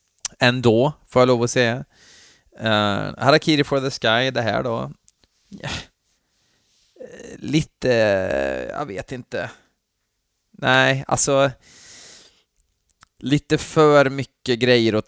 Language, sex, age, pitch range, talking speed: Swedish, male, 20-39, 105-125 Hz, 105 wpm